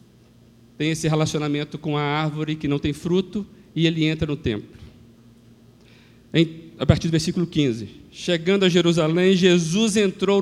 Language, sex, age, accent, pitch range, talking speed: Portuguese, male, 50-69, Brazilian, 150-230 Hz, 145 wpm